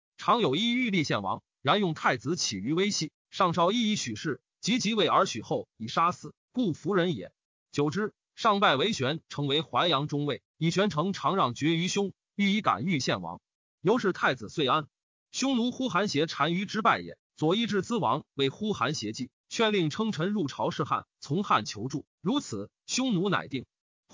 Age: 30-49